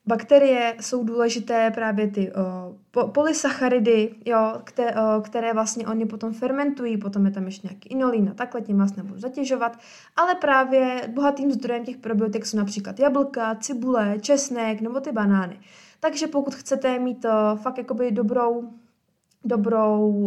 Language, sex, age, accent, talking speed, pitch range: Czech, female, 20-39, native, 140 wpm, 215-260 Hz